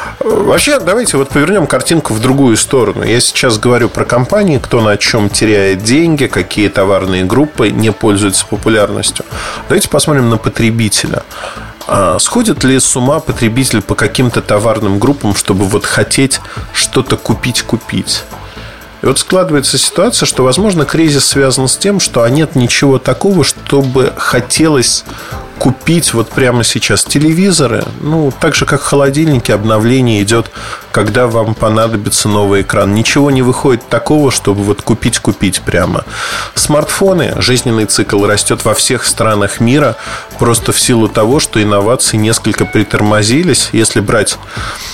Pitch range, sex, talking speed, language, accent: 105-140 Hz, male, 140 wpm, Russian, native